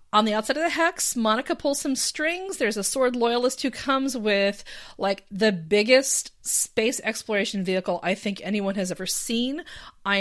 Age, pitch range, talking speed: 30-49, 200-270 Hz, 175 wpm